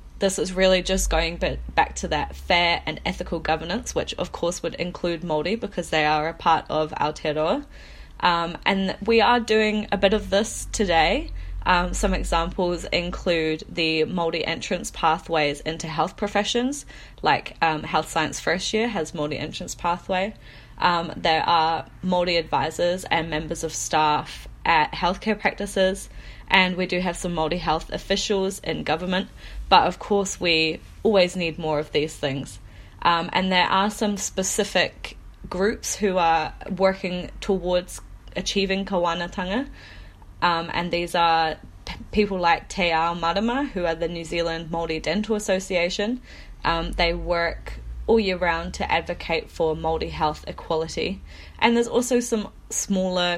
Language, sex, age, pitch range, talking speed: English, female, 20-39, 160-195 Hz, 155 wpm